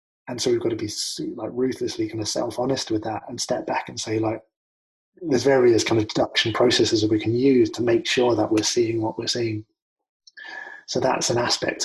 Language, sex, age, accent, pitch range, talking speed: English, male, 20-39, British, 110-150 Hz, 215 wpm